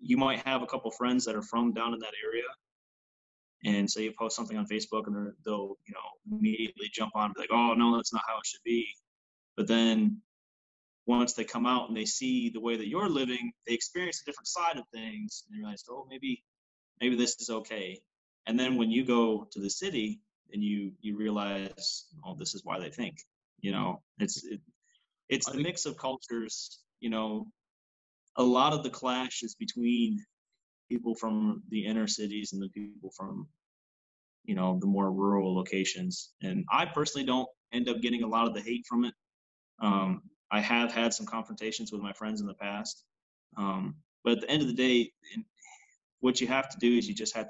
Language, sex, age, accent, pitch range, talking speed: English, male, 20-39, American, 105-130 Hz, 205 wpm